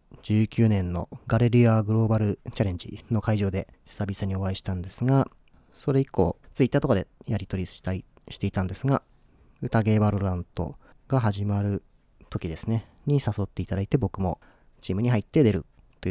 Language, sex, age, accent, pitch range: Japanese, male, 40-59, native, 95-120 Hz